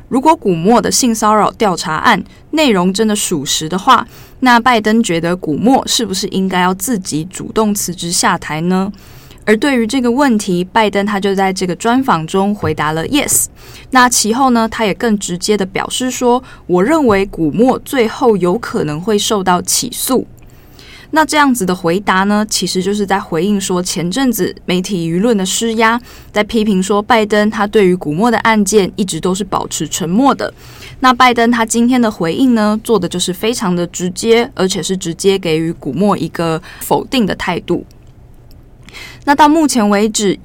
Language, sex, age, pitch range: Chinese, female, 20-39, 185-235 Hz